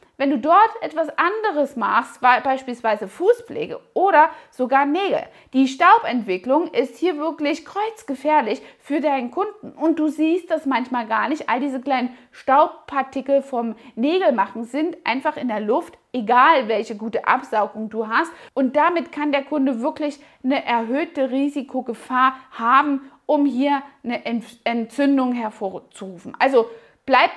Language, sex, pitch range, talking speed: German, female, 235-295 Hz, 135 wpm